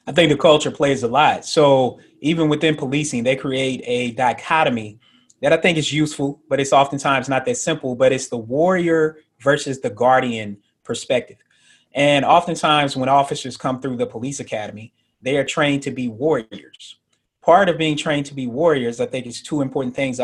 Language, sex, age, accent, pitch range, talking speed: English, male, 30-49, American, 130-160 Hz, 185 wpm